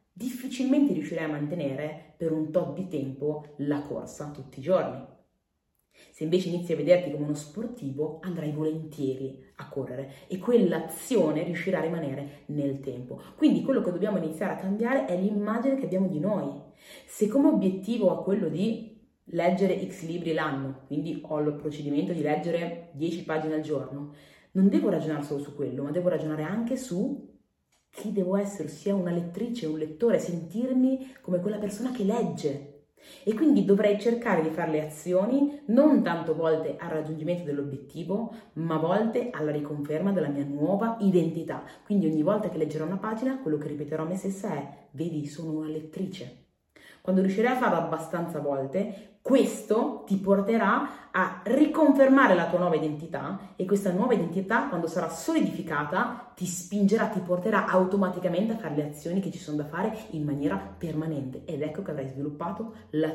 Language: Italian